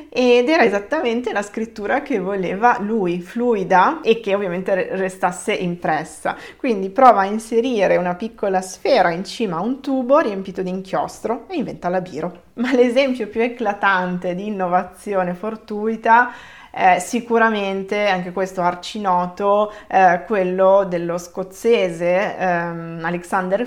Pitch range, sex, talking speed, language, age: 180-230 Hz, female, 130 wpm, Italian, 20-39